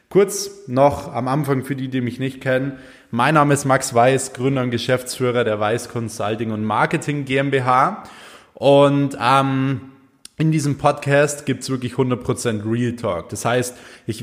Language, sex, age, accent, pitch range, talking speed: German, male, 20-39, German, 115-140 Hz, 160 wpm